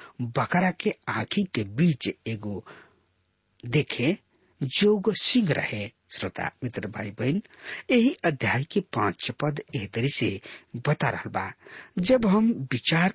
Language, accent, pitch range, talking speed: English, Indian, 105-175 Hz, 125 wpm